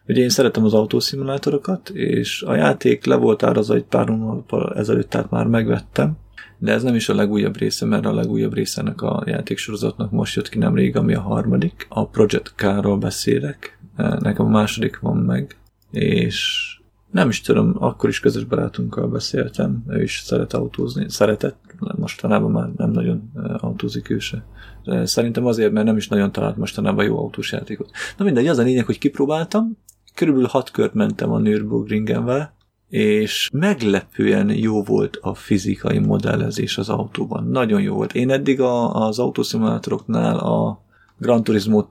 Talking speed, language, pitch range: 155 wpm, Hungarian, 105-130 Hz